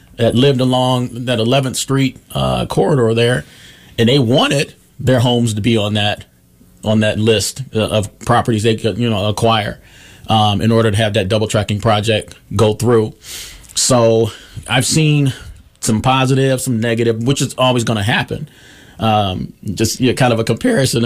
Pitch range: 110-125 Hz